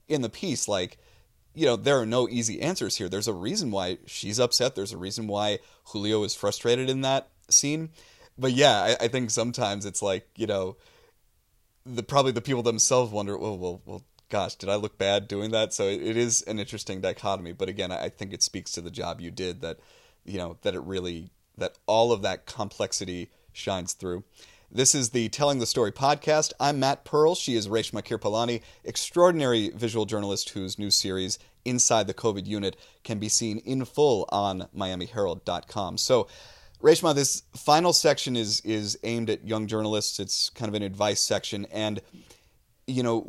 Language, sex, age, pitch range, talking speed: English, male, 30-49, 100-125 Hz, 190 wpm